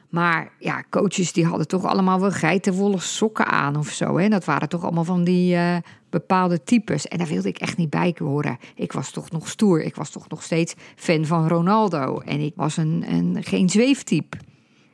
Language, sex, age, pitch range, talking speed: Dutch, female, 50-69, 170-215 Hz, 195 wpm